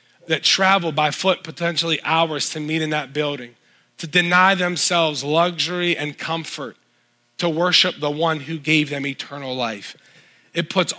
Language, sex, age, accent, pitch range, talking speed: English, male, 30-49, American, 135-170 Hz, 155 wpm